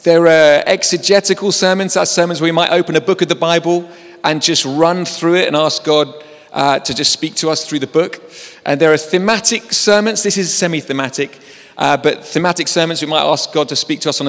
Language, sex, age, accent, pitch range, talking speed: English, male, 40-59, British, 130-175 Hz, 220 wpm